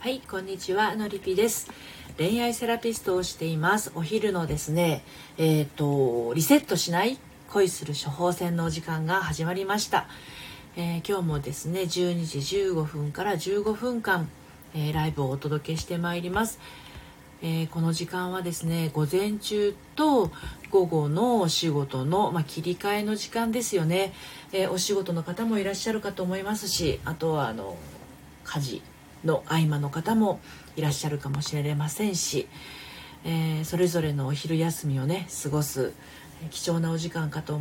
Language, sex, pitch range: Japanese, female, 155-200 Hz